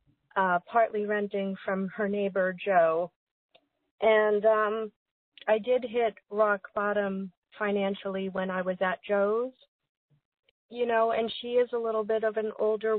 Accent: American